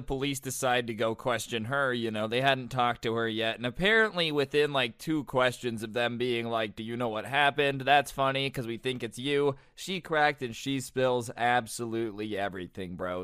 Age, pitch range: 20-39, 115-140 Hz